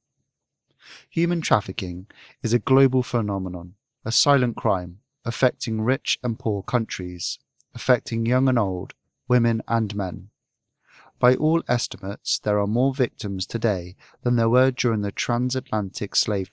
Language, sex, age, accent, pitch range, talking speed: English, male, 30-49, British, 105-130 Hz, 130 wpm